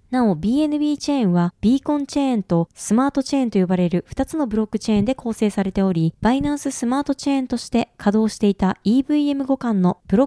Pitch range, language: 200-275 Hz, Japanese